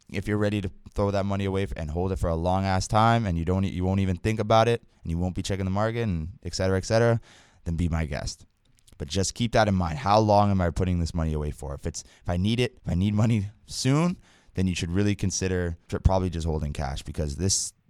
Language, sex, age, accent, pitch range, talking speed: English, male, 20-39, American, 90-115 Hz, 260 wpm